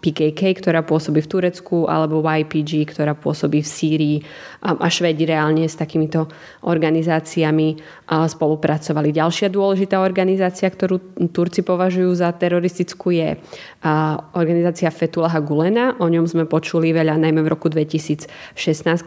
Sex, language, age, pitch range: female, Slovak, 20-39, 155-175 Hz